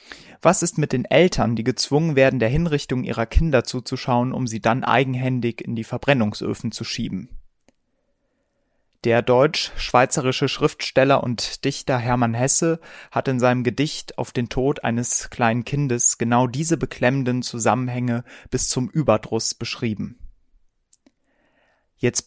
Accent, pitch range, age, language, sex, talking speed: German, 120-140 Hz, 30-49, German, male, 130 wpm